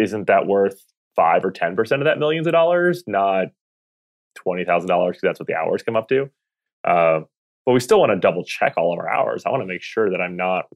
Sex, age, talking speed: male, 20-39, 230 wpm